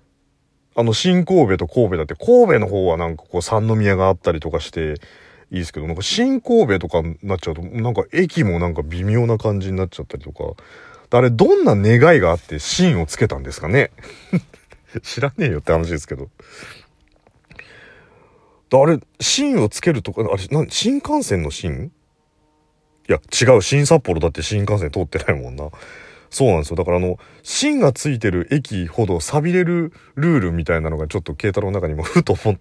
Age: 40-59